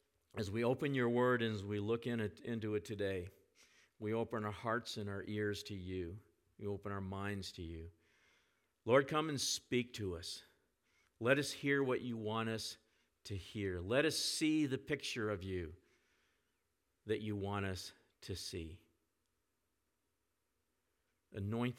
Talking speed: 155 wpm